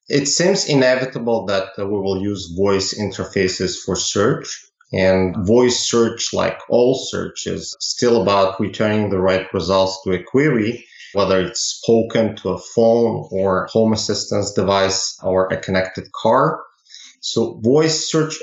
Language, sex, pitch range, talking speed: English, male, 95-120 Hz, 140 wpm